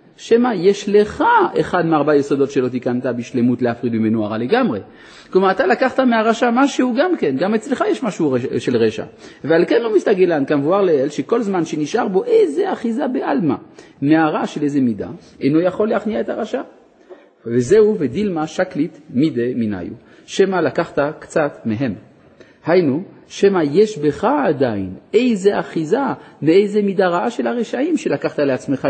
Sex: male